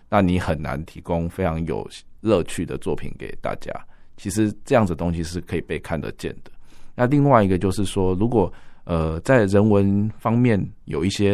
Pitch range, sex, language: 80-100 Hz, male, Chinese